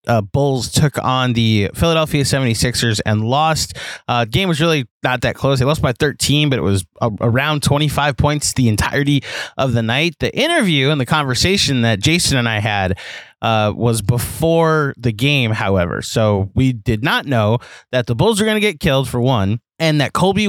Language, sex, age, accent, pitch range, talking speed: English, male, 20-39, American, 115-155 Hz, 195 wpm